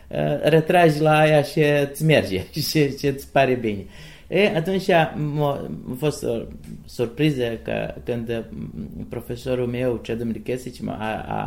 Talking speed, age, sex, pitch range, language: 115 wpm, 30-49, male, 110-145 Hz, Romanian